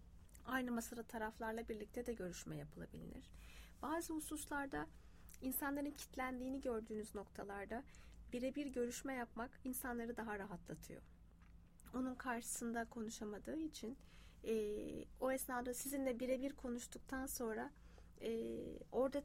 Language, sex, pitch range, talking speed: English, female, 215-270 Hz, 100 wpm